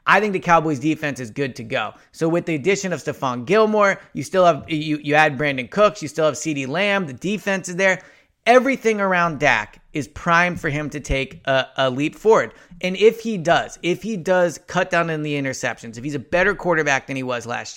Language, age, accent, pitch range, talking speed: English, 30-49, American, 140-185 Hz, 225 wpm